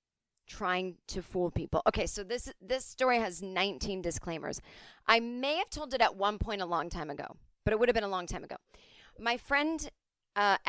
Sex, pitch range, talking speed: female, 180-225 Hz, 200 wpm